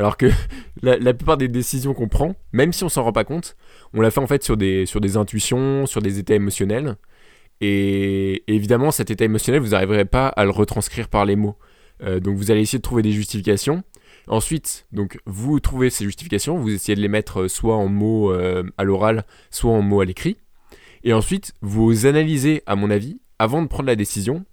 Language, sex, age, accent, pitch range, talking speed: French, male, 20-39, French, 100-125 Hz, 210 wpm